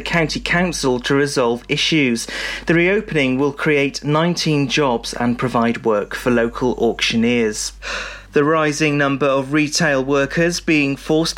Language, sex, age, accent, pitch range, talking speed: English, male, 30-49, British, 130-165 Hz, 130 wpm